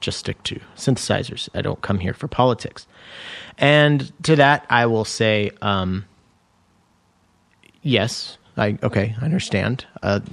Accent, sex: American, male